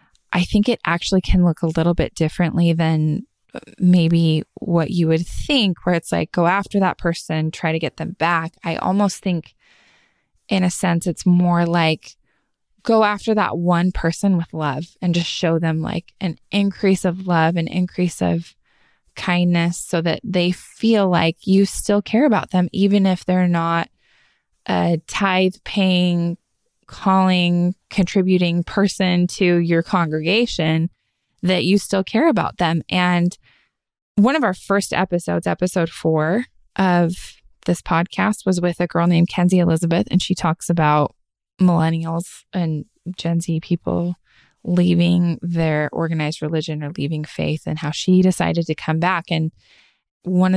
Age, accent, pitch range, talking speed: 20-39, American, 165-185 Hz, 150 wpm